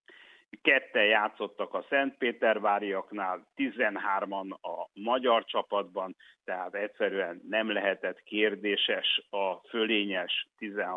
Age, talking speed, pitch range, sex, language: 60-79, 80 wpm, 100-125 Hz, male, Hungarian